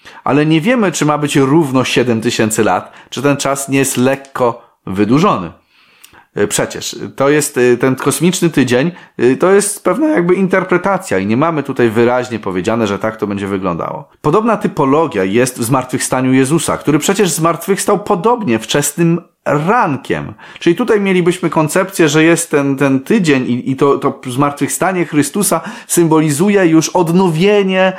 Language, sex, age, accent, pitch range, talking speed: Polish, male, 30-49, native, 120-170 Hz, 150 wpm